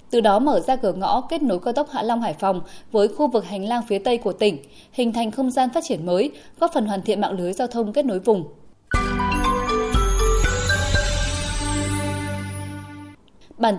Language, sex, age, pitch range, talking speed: Vietnamese, female, 10-29, 195-260 Hz, 185 wpm